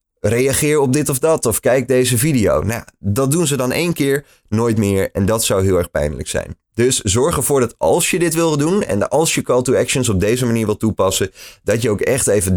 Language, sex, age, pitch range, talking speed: Dutch, male, 20-39, 95-125 Hz, 240 wpm